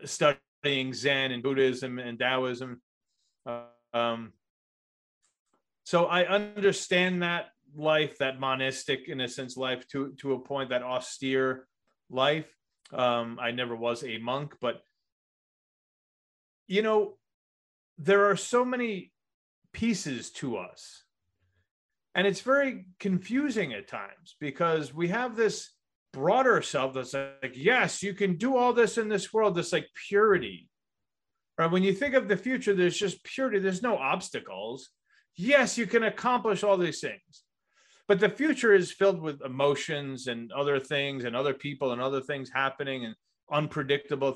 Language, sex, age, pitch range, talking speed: English, male, 30-49, 130-205 Hz, 145 wpm